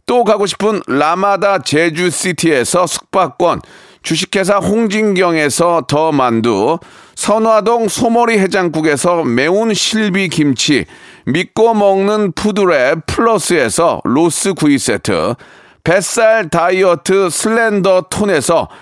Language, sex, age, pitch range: Korean, male, 40-59, 170-220 Hz